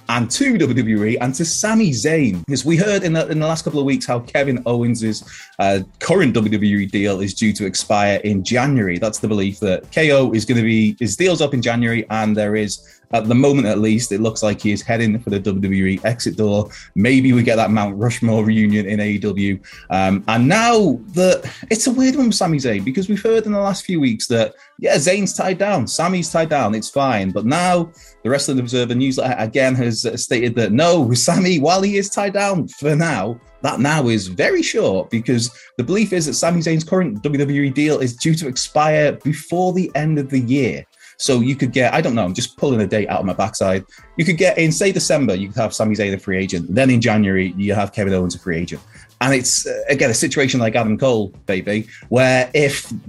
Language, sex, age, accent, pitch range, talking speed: English, male, 20-39, British, 110-160 Hz, 225 wpm